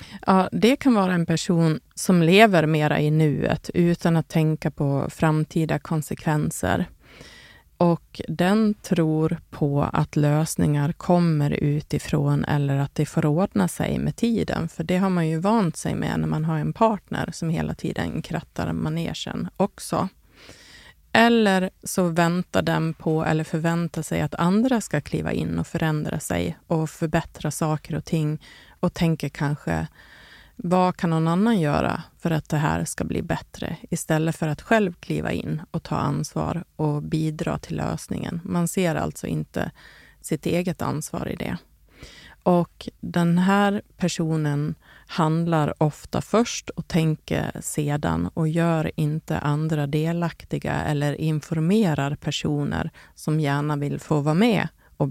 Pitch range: 150-175 Hz